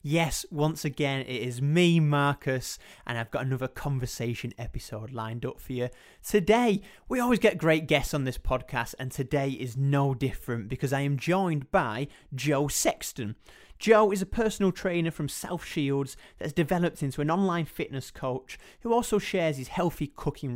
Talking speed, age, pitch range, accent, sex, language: 175 wpm, 30-49, 125-170 Hz, British, male, English